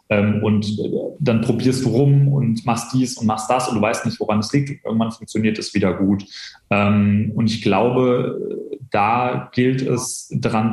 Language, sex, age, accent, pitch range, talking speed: German, male, 30-49, German, 105-130 Hz, 175 wpm